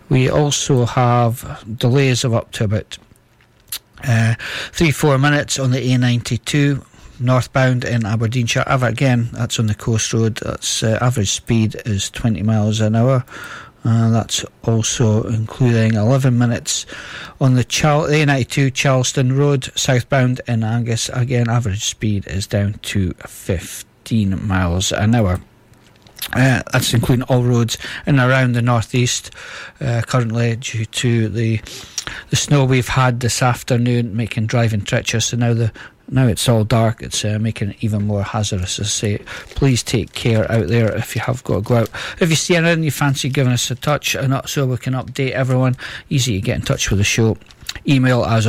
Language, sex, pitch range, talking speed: English, male, 110-130 Hz, 165 wpm